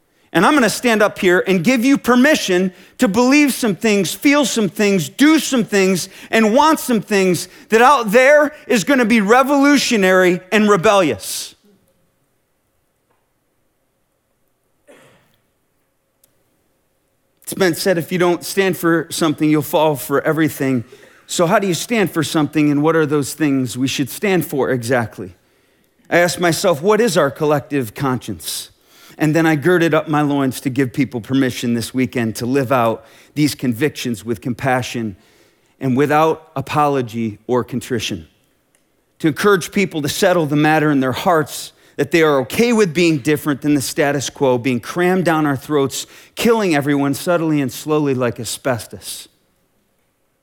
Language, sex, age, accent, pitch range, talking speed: English, male, 40-59, American, 135-195 Hz, 155 wpm